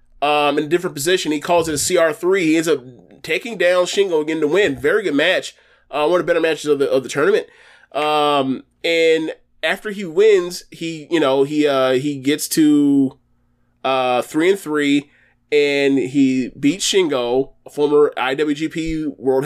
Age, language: 20-39, English